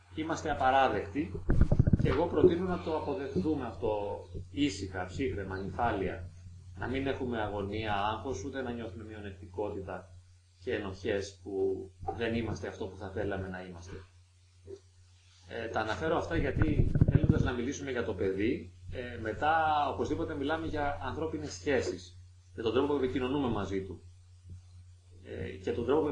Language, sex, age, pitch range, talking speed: Greek, male, 30-49, 90-125 Hz, 140 wpm